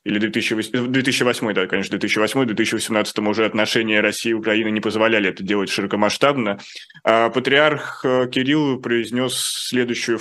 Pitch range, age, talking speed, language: 115-130 Hz, 20-39, 125 wpm, Russian